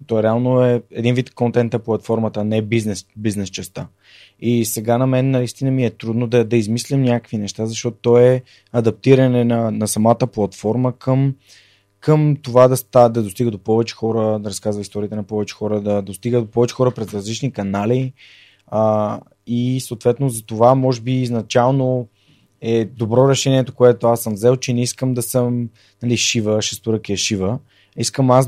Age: 20-39